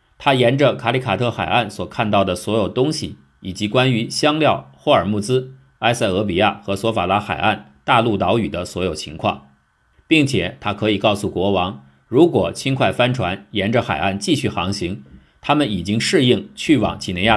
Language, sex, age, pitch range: Chinese, male, 50-69, 90-125 Hz